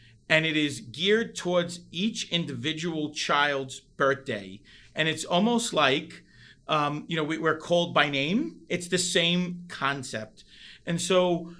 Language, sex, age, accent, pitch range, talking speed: English, male, 40-59, American, 150-185 Hz, 140 wpm